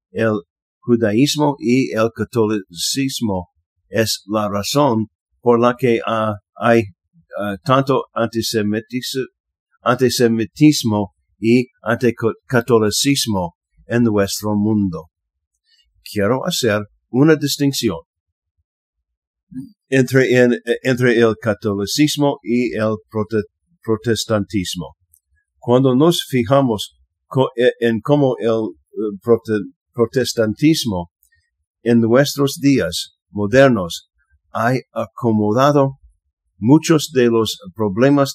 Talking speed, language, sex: 75 wpm, English, male